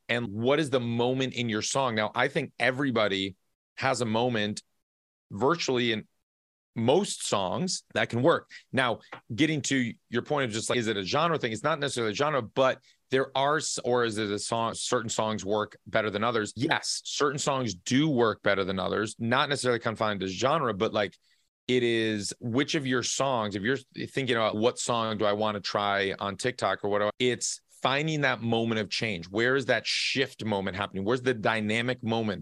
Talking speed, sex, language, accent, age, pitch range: 195 wpm, male, English, American, 30-49, 110-130 Hz